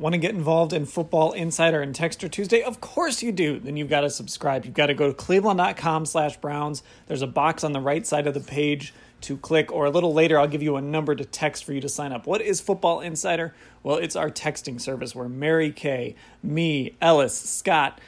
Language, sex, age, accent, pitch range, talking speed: English, male, 30-49, American, 140-165 Hz, 230 wpm